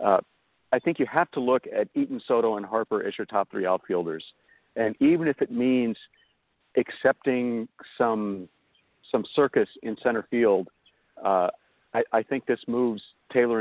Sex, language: male, English